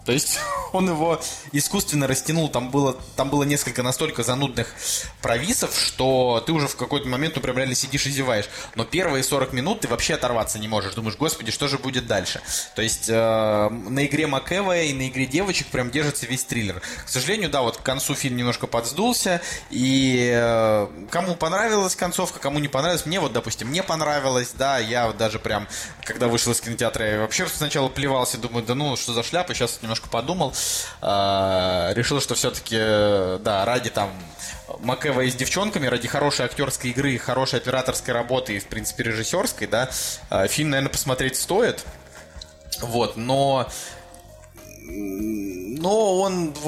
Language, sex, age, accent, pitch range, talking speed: Russian, male, 20-39, native, 115-145 Hz, 165 wpm